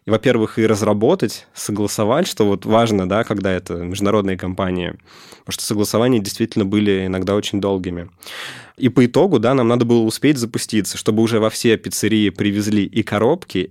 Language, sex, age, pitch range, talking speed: Russian, male, 20-39, 100-120 Hz, 160 wpm